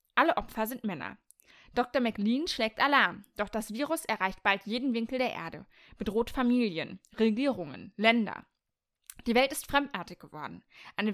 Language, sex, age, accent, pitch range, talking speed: German, female, 20-39, German, 220-280 Hz, 145 wpm